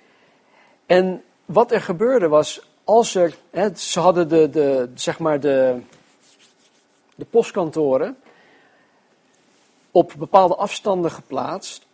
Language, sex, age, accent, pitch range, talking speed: Dutch, male, 50-69, Dutch, 155-195 Hz, 105 wpm